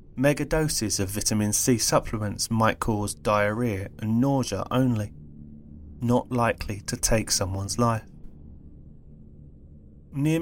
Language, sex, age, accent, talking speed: English, male, 20-39, British, 110 wpm